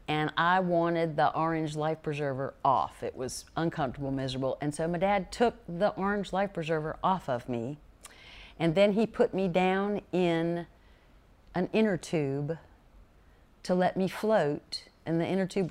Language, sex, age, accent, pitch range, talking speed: English, female, 50-69, American, 145-185 Hz, 160 wpm